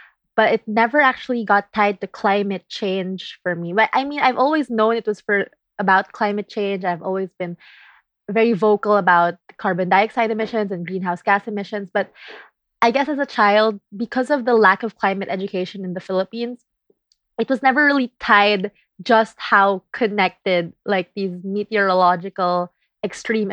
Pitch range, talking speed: 185-225 Hz, 165 wpm